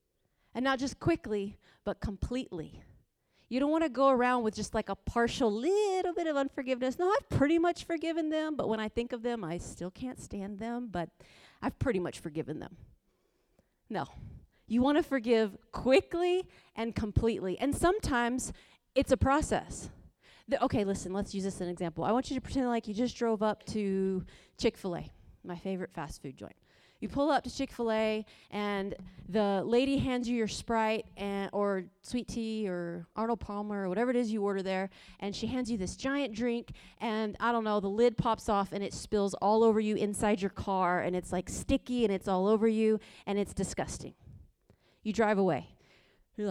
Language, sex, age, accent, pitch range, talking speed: English, female, 30-49, American, 190-245 Hz, 190 wpm